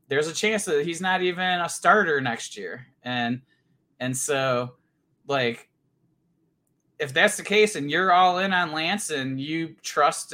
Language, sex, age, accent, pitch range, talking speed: English, male, 20-39, American, 140-170 Hz, 165 wpm